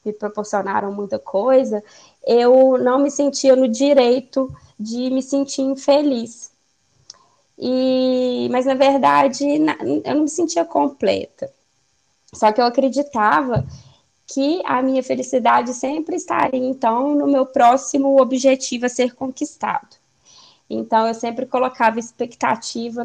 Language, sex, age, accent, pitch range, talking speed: Portuguese, female, 10-29, Brazilian, 215-275 Hz, 115 wpm